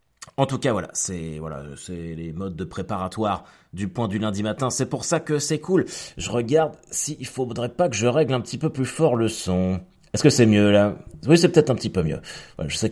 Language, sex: French, male